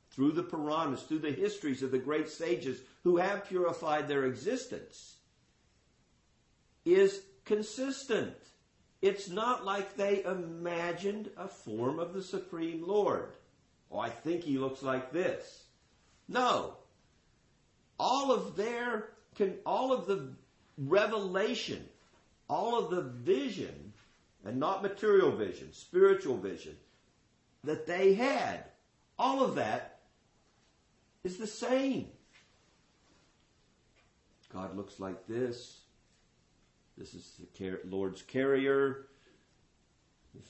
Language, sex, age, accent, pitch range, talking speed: English, male, 50-69, American, 125-205 Hz, 110 wpm